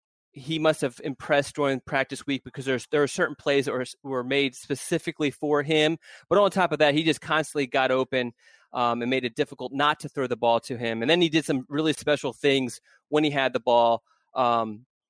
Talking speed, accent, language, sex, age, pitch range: 225 wpm, American, English, male, 20-39, 130-160 Hz